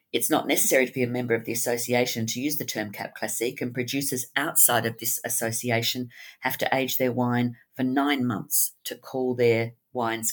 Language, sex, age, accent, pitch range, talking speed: English, female, 50-69, Australian, 115-140 Hz, 200 wpm